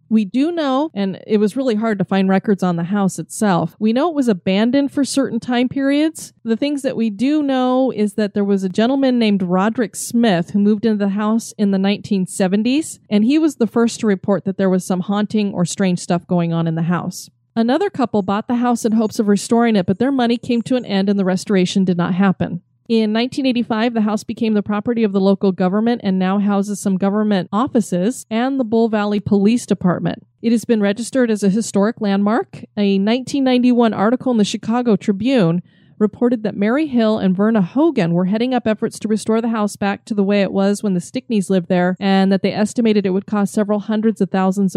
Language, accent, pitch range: English, American, 195-235 Hz